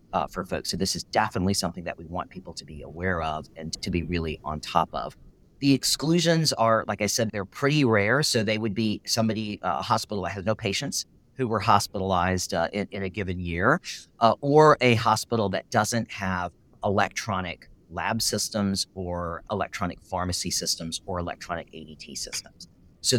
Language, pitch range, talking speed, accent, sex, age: English, 90-120 Hz, 185 wpm, American, male, 40-59